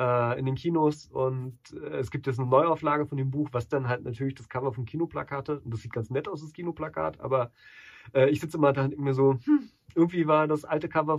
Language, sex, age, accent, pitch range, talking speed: German, male, 30-49, German, 130-155 Hz, 225 wpm